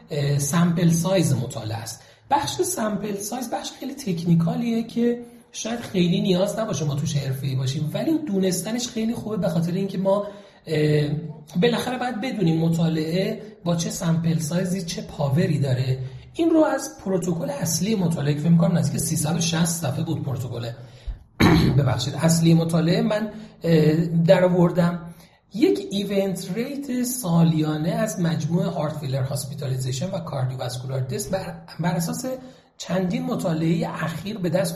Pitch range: 150-200 Hz